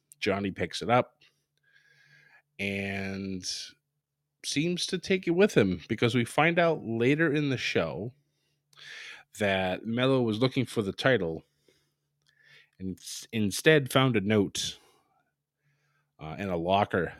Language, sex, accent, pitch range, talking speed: English, male, American, 100-145 Hz, 120 wpm